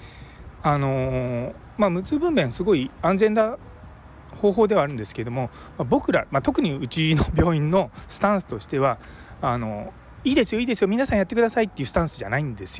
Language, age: Japanese, 30-49